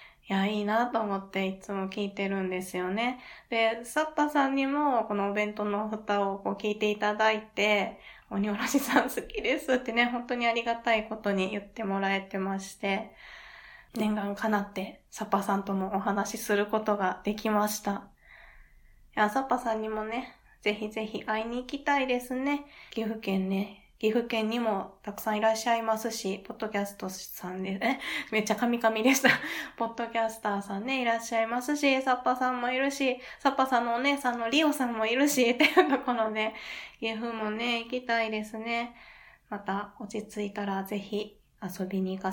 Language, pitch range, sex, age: Japanese, 205-245 Hz, female, 20-39